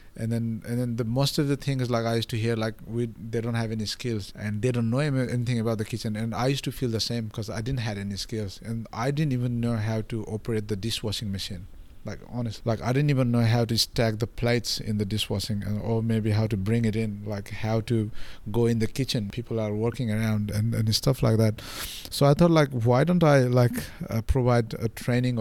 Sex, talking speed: male, 245 wpm